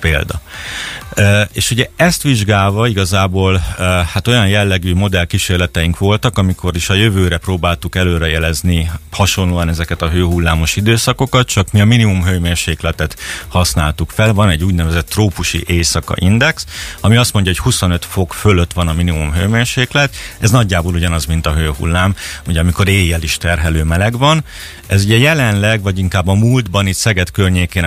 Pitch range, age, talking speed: 85-100 Hz, 30-49, 155 wpm